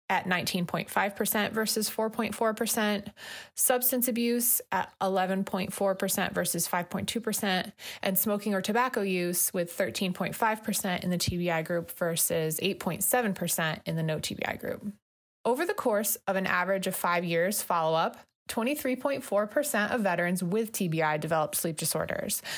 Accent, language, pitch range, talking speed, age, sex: American, English, 175-215 Hz, 120 wpm, 20-39, female